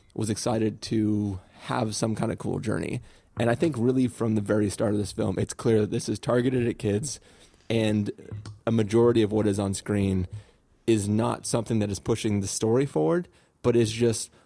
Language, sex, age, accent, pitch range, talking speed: English, male, 30-49, American, 105-120 Hz, 200 wpm